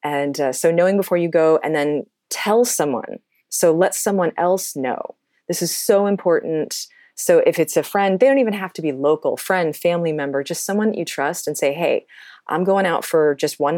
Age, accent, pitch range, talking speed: 30-49, American, 140-185 Hz, 215 wpm